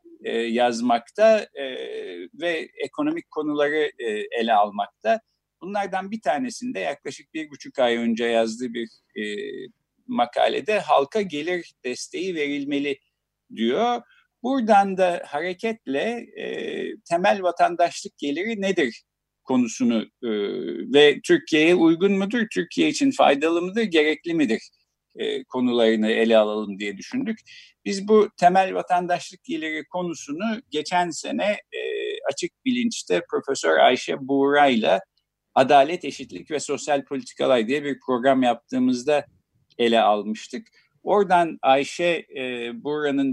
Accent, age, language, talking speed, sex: native, 50-69, Turkish, 105 wpm, male